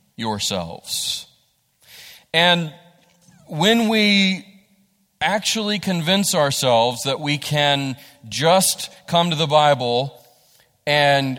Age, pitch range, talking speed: 40-59, 150-180 Hz, 85 wpm